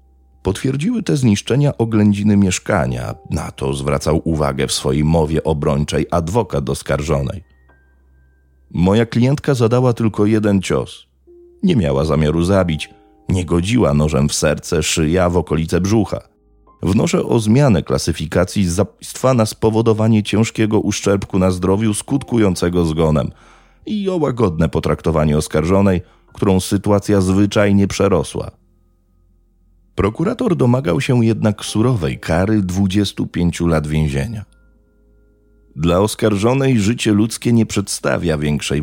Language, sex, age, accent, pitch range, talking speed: Polish, male, 30-49, native, 75-110 Hz, 115 wpm